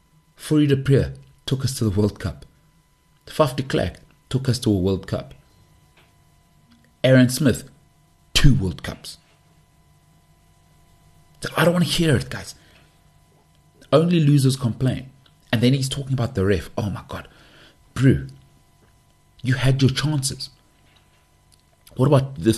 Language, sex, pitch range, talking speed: English, male, 95-140 Hz, 135 wpm